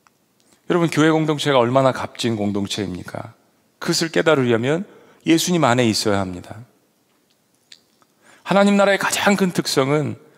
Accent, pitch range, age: native, 135-185 Hz, 40-59